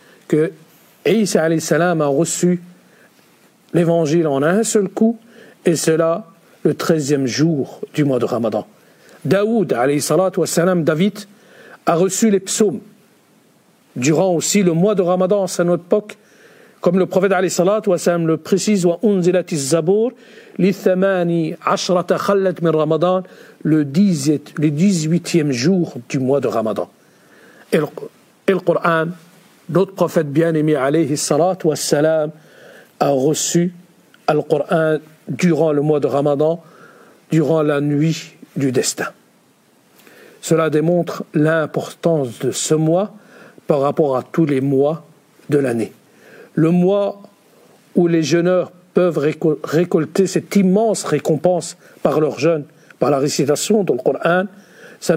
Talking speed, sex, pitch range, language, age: 110 wpm, male, 155-190 Hz, French, 50-69